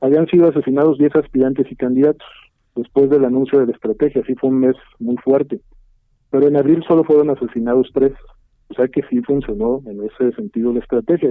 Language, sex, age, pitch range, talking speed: Spanish, male, 50-69, 125-150 Hz, 190 wpm